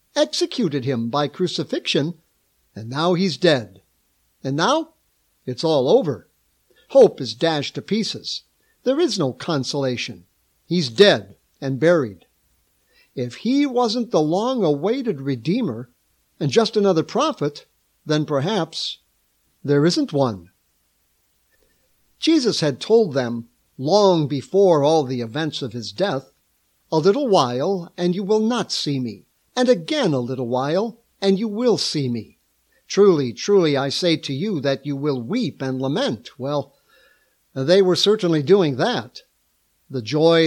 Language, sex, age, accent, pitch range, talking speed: English, male, 60-79, American, 135-200 Hz, 135 wpm